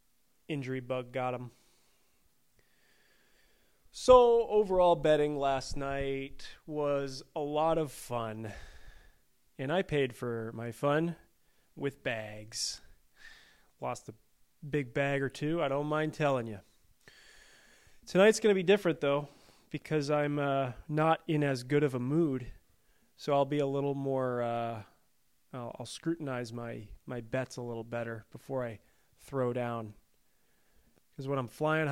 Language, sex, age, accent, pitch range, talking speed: English, male, 30-49, American, 120-155 Hz, 135 wpm